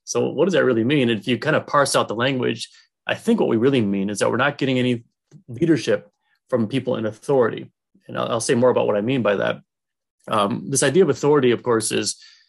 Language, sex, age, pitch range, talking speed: English, male, 30-49, 110-145 Hz, 240 wpm